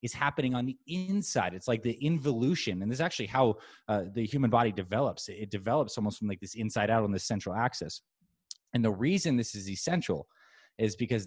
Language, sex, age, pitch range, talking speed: English, male, 20-39, 105-135 Hz, 210 wpm